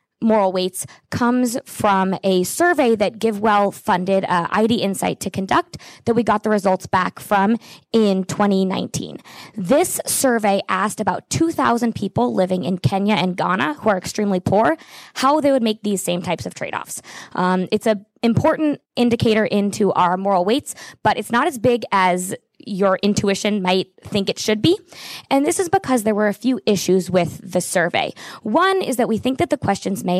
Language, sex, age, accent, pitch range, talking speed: English, female, 20-39, American, 185-240 Hz, 175 wpm